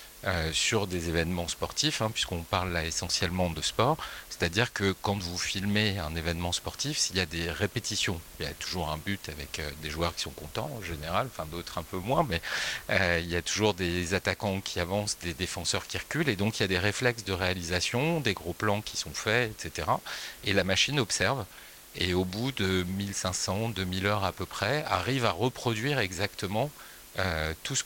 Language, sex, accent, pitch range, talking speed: French, male, French, 90-110 Hz, 205 wpm